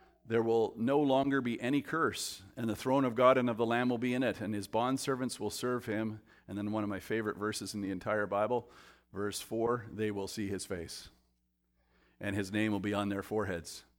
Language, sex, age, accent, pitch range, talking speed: English, male, 50-69, American, 100-120 Hz, 225 wpm